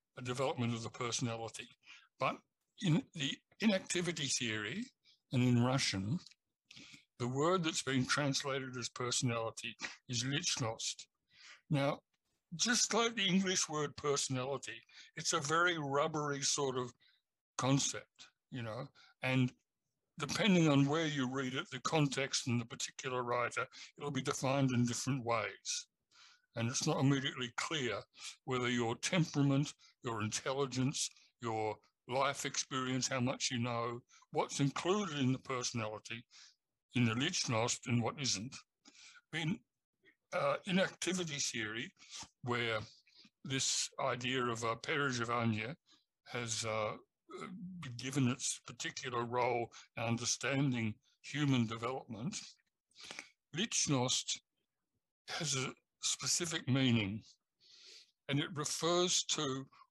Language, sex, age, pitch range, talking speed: English, male, 60-79, 120-150 Hz, 115 wpm